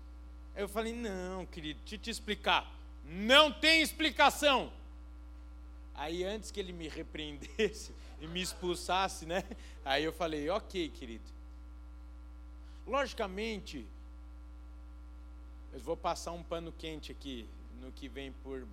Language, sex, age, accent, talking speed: Portuguese, male, 50-69, Brazilian, 120 wpm